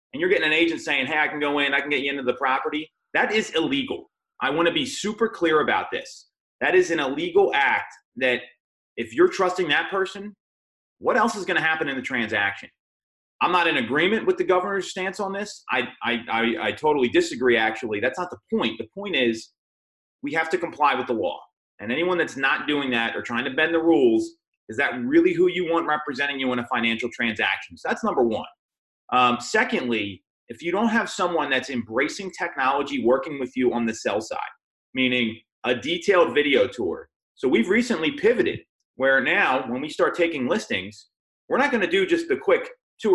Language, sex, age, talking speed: English, male, 30-49, 210 wpm